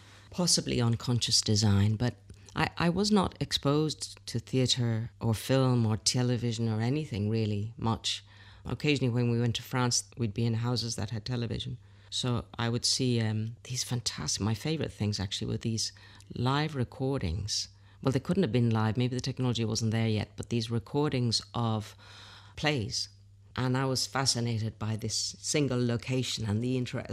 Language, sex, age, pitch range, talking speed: English, female, 40-59, 105-125 Hz, 165 wpm